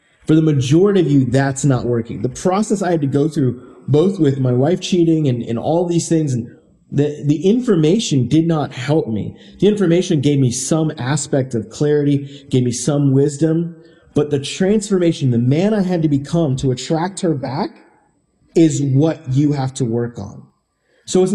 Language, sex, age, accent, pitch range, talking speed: English, male, 30-49, American, 130-160 Hz, 190 wpm